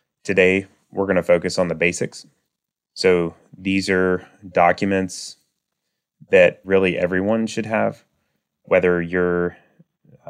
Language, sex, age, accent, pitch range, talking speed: English, male, 20-39, American, 85-95 Hz, 110 wpm